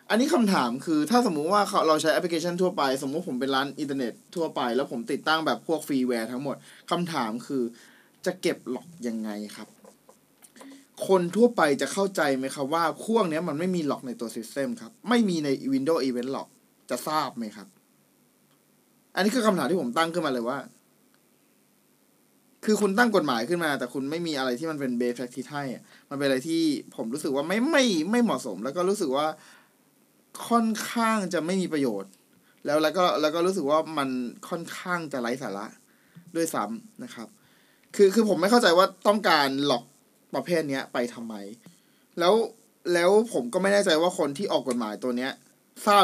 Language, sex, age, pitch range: Thai, male, 20-39, 135-220 Hz